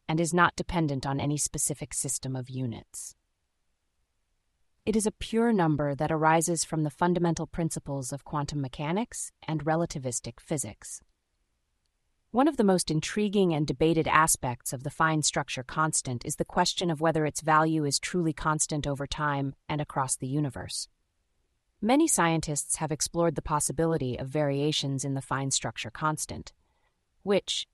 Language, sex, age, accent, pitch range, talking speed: English, female, 30-49, American, 135-170 Hz, 150 wpm